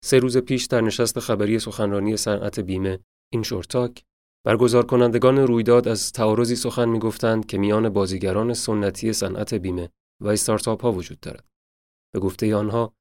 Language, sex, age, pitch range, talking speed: Persian, male, 30-49, 95-115 Hz, 145 wpm